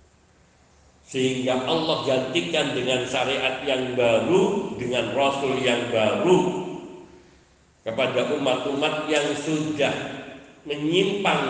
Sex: male